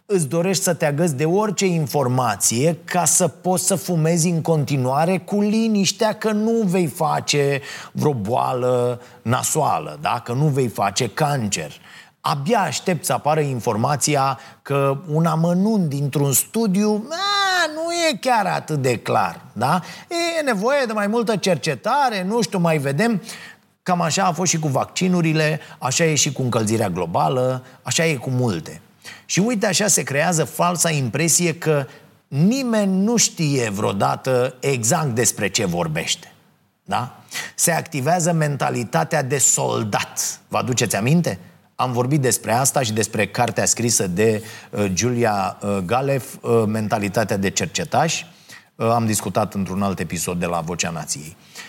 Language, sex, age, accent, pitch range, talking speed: Romanian, male, 30-49, native, 125-180 Hz, 140 wpm